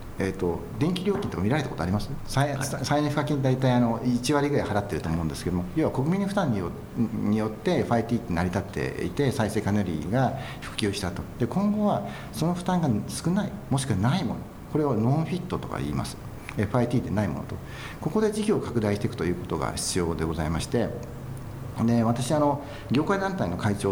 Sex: male